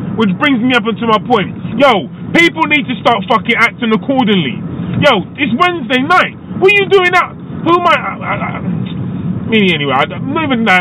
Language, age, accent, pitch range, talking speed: English, 20-39, British, 190-280 Hz, 195 wpm